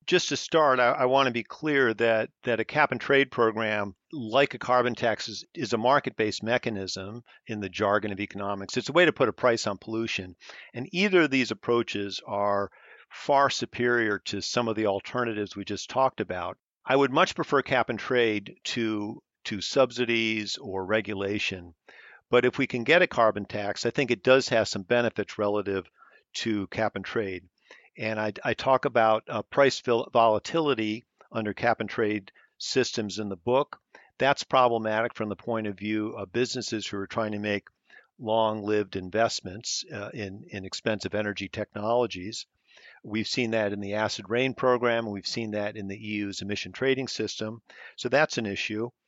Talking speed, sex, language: 170 wpm, male, English